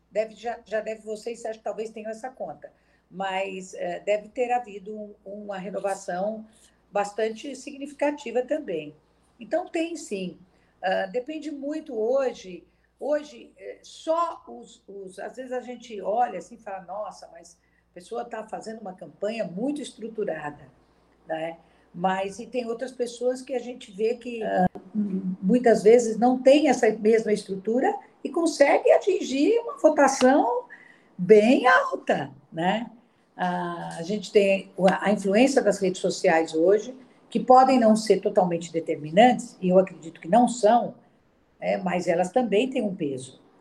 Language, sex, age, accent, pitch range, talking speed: Portuguese, female, 50-69, Brazilian, 190-250 Hz, 135 wpm